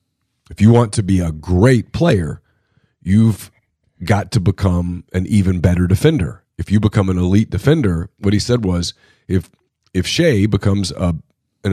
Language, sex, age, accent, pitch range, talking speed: English, male, 40-59, American, 95-125 Hz, 165 wpm